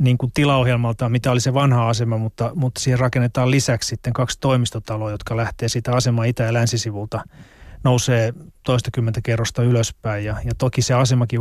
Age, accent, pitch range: 30-49, native, 115-125 Hz